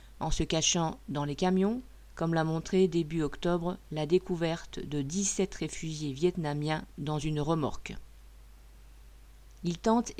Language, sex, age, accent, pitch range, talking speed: French, female, 50-69, French, 150-195 Hz, 130 wpm